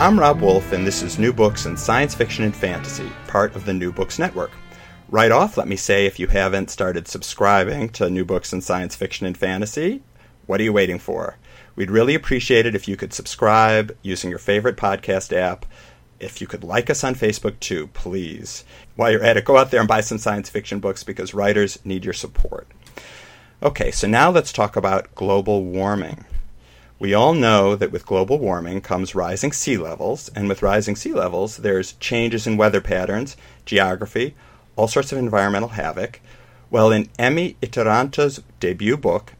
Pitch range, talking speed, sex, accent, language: 95-115 Hz, 185 wpm, male, American, English